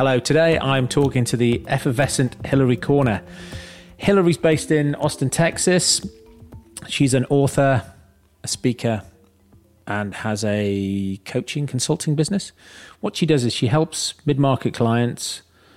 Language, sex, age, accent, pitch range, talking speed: English, male, 40-59, British, 110-140 Hz, 130 wpm